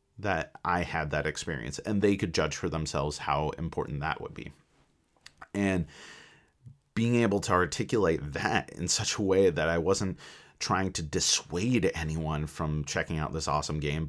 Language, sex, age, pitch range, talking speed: English, male, 30-49, 80-100 Hz, 165 wpm